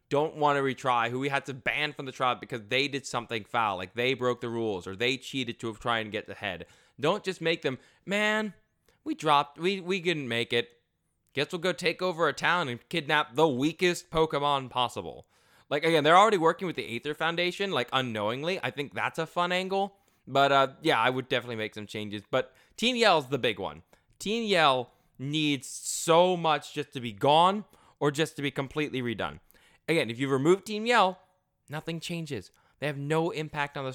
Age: 20-39